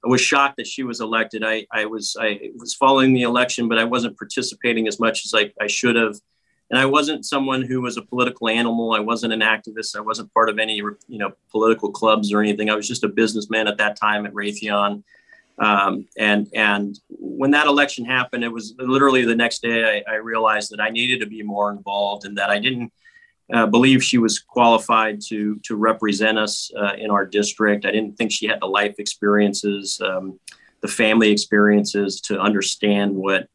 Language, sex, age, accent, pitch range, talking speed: English, male, 30-49, American, 105-120 Hz, 205 wpm